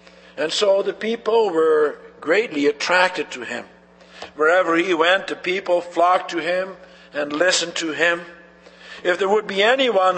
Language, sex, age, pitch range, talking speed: English, male, 60-79, 145-190 Hz, 155 wpm